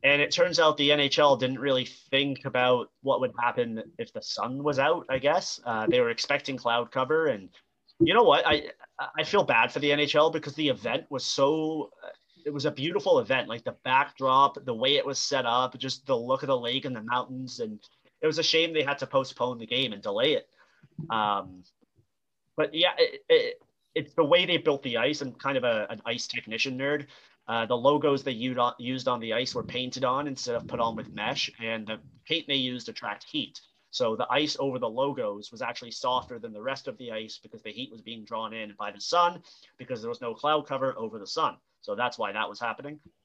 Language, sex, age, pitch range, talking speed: English, male, 30-49, 120-155 Hz, 225 wpm